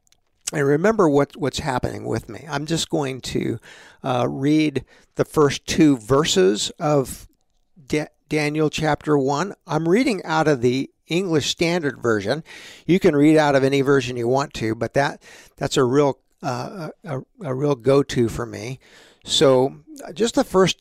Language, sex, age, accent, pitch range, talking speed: English, male, 60-79, American, 130-170 Hz, 160 wpm